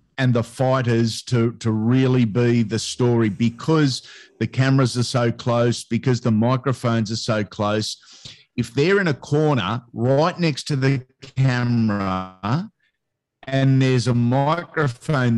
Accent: Australian